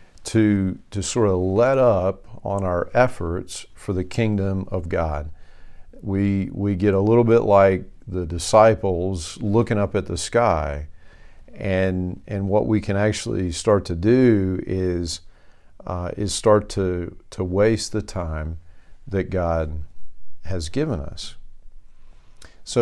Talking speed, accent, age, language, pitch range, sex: 135 wpm, American, 50-69, English, 85-105 Hz, male